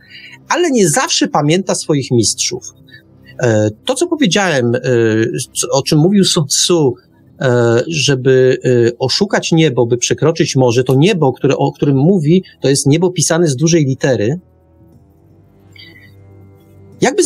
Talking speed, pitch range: 120 wpm, 130-175 Hz